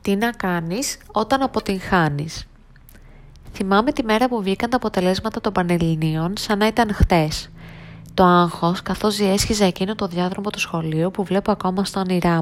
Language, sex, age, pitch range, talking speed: Greek, female, 20-39, 165-210 Hz, 155 wpm